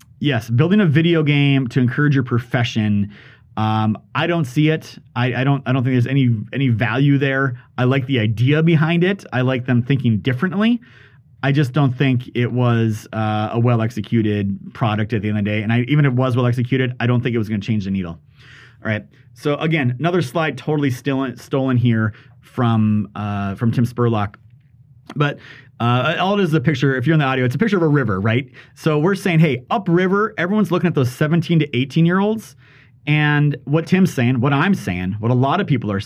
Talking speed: 220 wpm